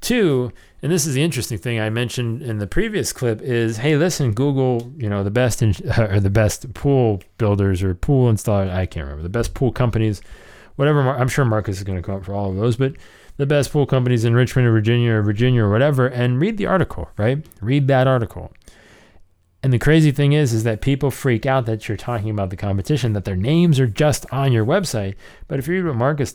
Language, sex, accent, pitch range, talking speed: English, male, American, 95-130 Hz, 230 wpm